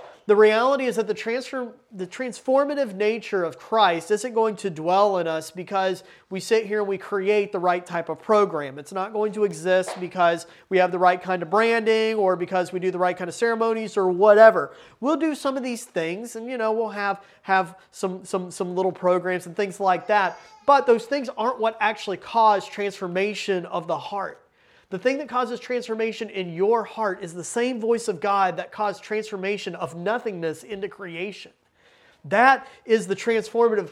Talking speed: 195 wpm